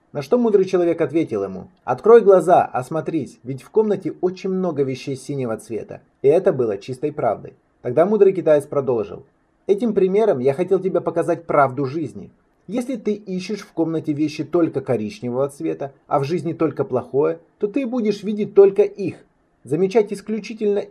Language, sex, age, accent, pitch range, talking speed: Russian, male, 30-49, native, 130-190 Hz, 160 wpm